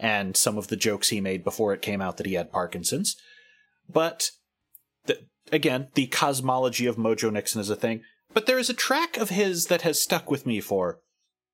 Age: 30-49